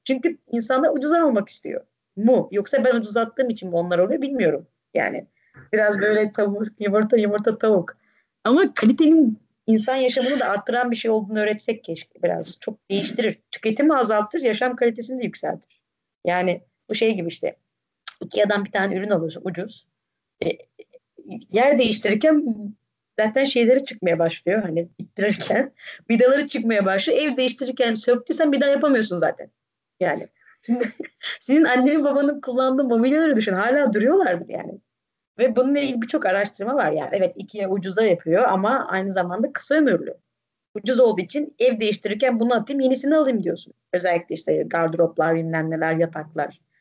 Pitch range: 195-260 Hz